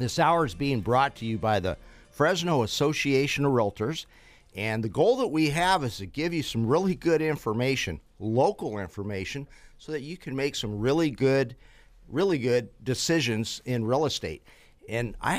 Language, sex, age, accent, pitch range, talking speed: English, male, 50-69, American, 105-135 Hz, 175 wpm